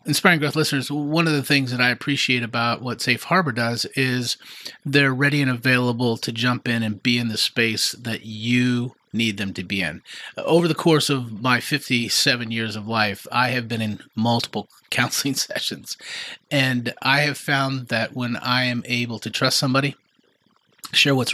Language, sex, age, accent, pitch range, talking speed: English, male, 30-49, American, 115-145 Hz, 185 wpm